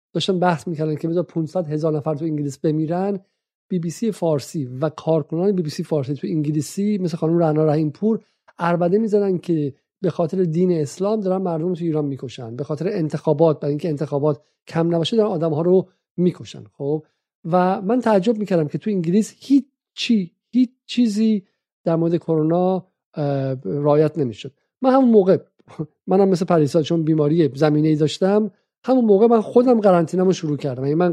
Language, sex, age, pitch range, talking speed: Persian, male, 50-69, 150-190 Hz, 180 wpm